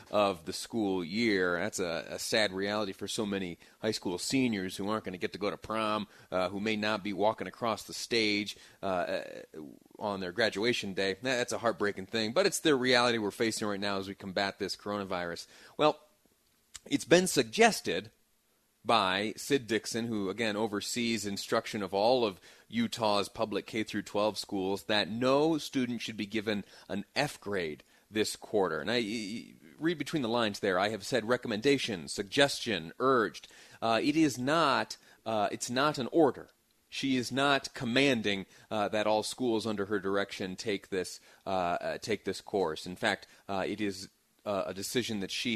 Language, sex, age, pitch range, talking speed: English, male, 30-49, 100-115 Hz, 180 wpm